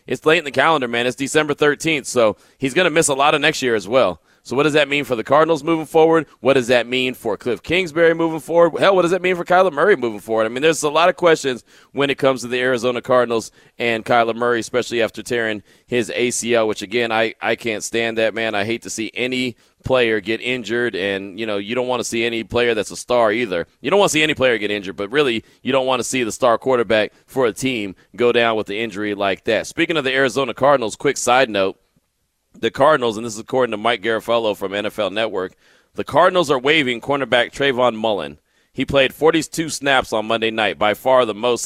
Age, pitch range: 30-49, 110-140 Hz